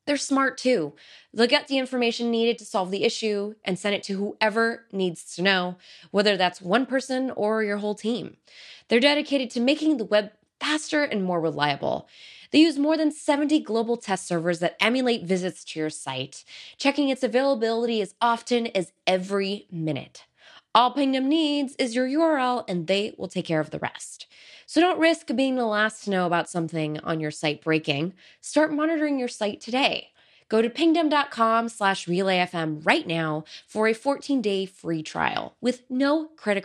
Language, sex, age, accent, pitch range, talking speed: English, female, 20-39, American, 180-265 Hz, 175 wpm